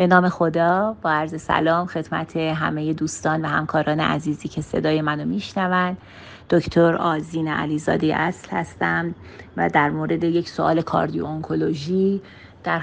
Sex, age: female, 30-49